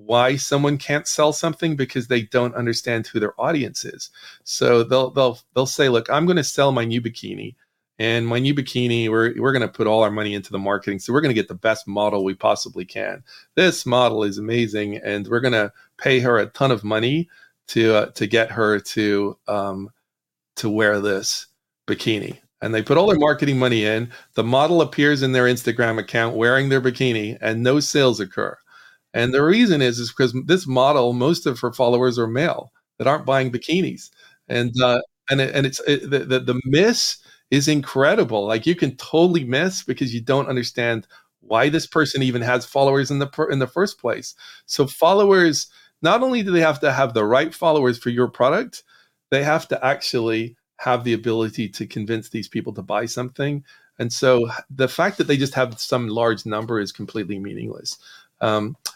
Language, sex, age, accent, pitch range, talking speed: English, male, 40-59, American, 115-140 Hz, 195 wpm